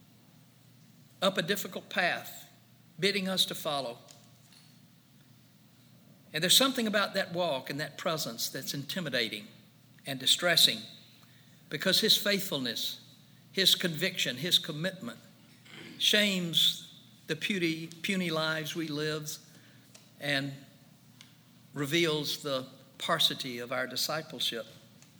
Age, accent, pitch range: 60-79, American, 145-185 Hz